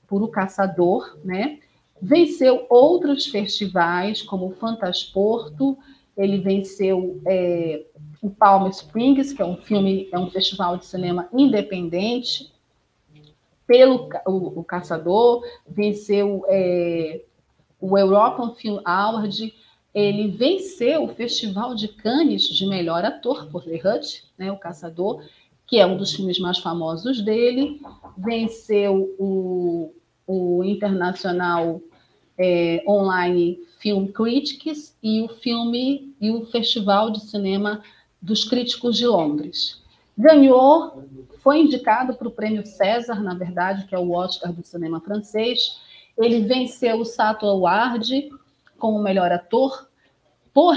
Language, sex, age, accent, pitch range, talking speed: Portuguese, female, 40-59, Brazilian, 180-240 Hz, 120 wpm